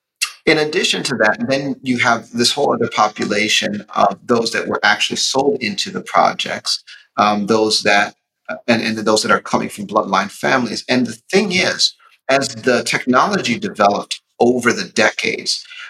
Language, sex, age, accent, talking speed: English, male, 30-49, American, 160 wpm